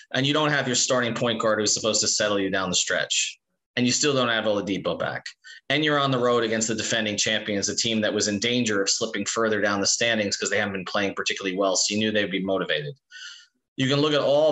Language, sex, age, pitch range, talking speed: English, male, 30-49, 115-145 Hz, 255 wpm